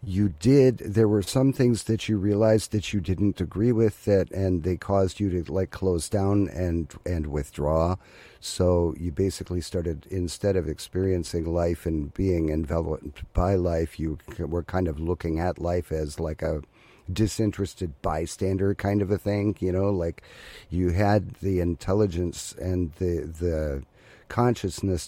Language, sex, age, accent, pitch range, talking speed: English, male, 50-69, American, 85-100 Hz, 160 wpm